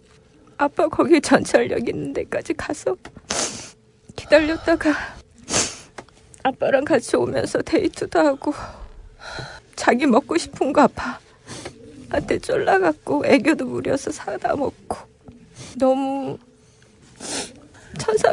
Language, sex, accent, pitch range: Korean, female, native, 325-430 Hz